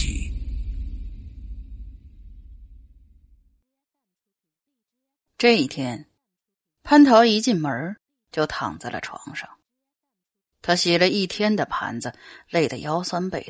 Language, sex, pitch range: Chinese, female, 150-240 Hz